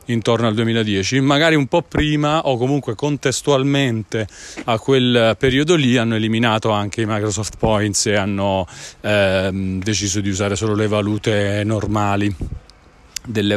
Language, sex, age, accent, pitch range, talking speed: Italian, male, 40-59, native, 110-135 Hz, 135 wpm